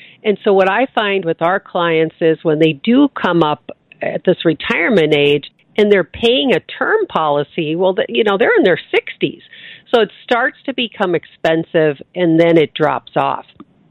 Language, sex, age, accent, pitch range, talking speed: English, female, 50-69, American, 165-230 Hz, 180 wpm